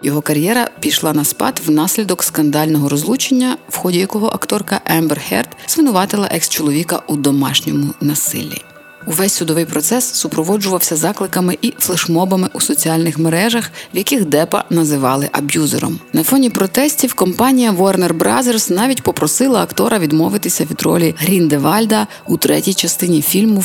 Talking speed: 130 wpm